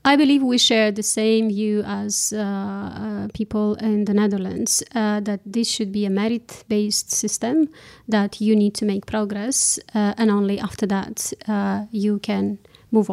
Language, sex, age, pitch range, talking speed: Dutch, female, 30-49, 205-235 Hz, 165 wpm